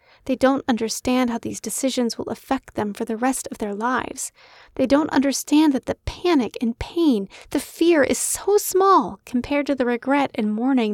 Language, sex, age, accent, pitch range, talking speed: English, female, 30-49, American, 220-285 Hz, 185 wpm